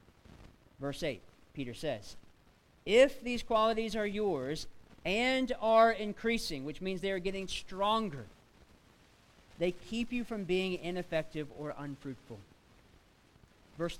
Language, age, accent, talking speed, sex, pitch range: English, 40-59, American, 115 wpm, male, 155-215 Hz